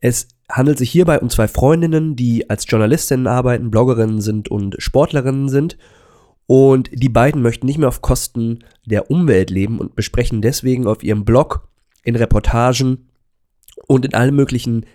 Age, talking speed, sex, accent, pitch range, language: 20-39, 155 wpm, male, German, 110-130 Hz, German